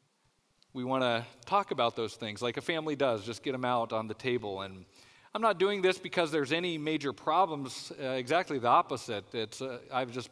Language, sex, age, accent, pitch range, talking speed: English, male, 40-59, American, 115-145 Hz, 210 wpm